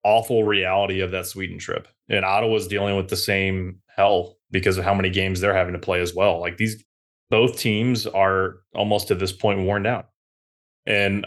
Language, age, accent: English, 20-39, American